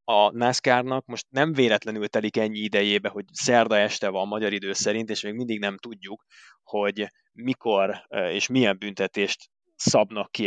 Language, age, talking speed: Hungarian, 20-39, 160 wpm